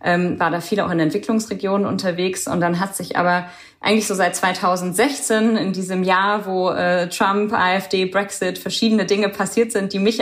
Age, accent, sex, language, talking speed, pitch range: 20-39, German, female, German, 180 wpm, 190-225 Hz